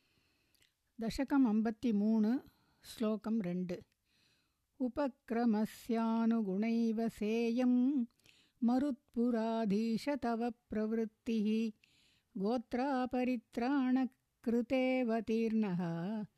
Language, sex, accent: Tamil, female, native